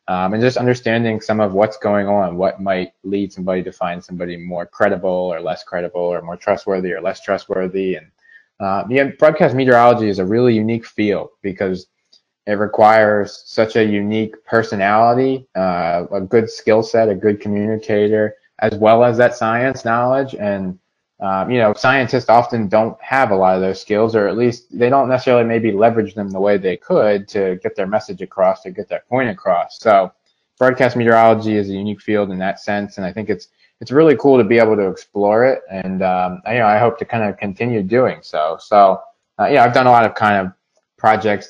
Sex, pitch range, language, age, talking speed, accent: male, 95-115 Hz, English, 20-39, 200 wpm, American